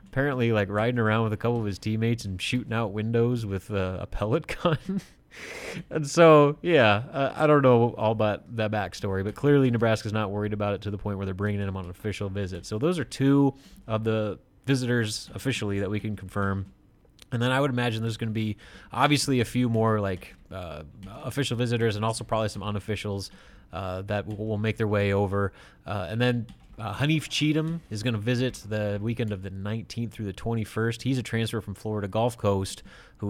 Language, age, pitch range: English, 30-49, 100-120 Hz